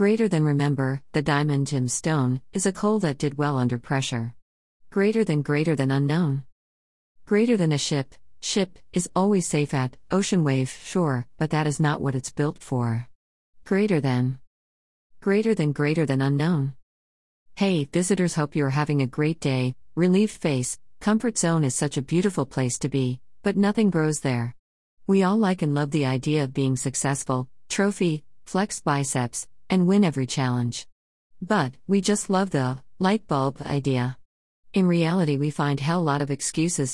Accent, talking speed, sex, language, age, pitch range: American, 165 wpm, female, English, 50-69, 130-180 Hz